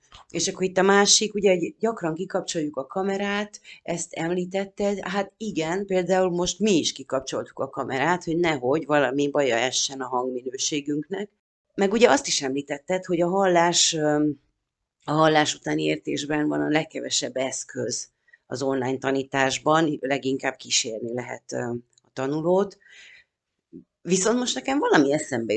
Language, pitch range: Hungarian, 135-195 Hz